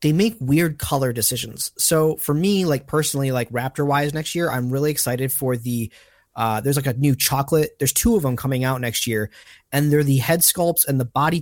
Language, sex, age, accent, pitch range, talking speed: English, male, 30-49, American, 120-145 Hz, 220 wpm